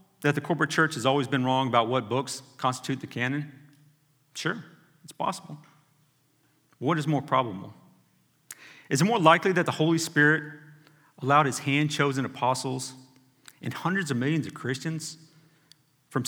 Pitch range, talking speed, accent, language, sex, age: 130-155 Hz, 145 wpm, American, English, male, 40-59